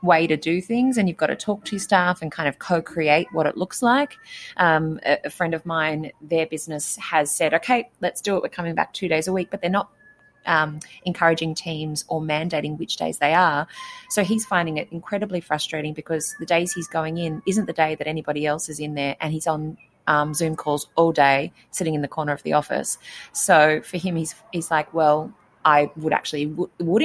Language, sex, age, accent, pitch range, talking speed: English, female, 30-49, Australian, 150-180 Hz, 220 wpm